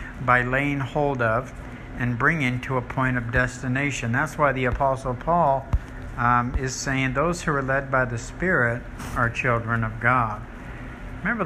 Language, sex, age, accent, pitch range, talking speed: English, male, 60-79, American, 120-140 Hz, 160 wpm